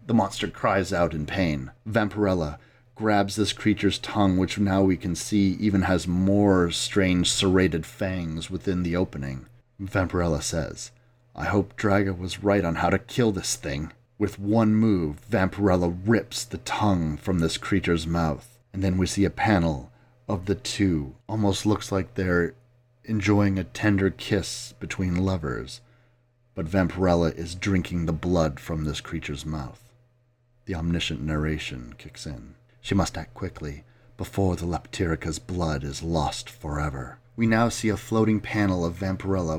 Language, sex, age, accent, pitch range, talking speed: English, male, 40-59, American, 85-110 Hz, 155 wpm